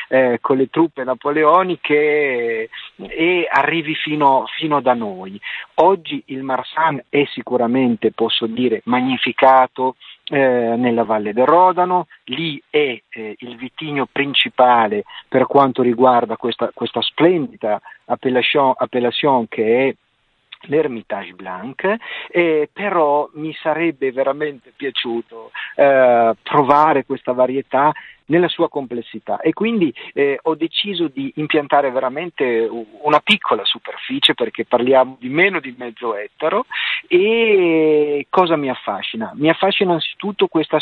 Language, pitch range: Italian, 125-160 Hz